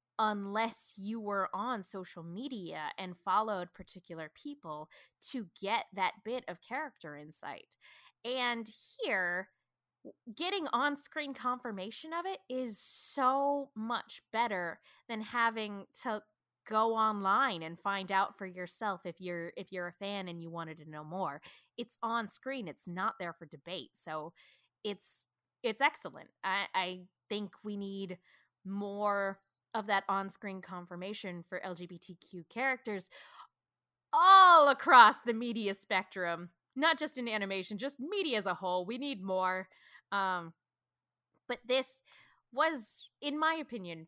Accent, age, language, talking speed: American, 20-39, English, 135 wpm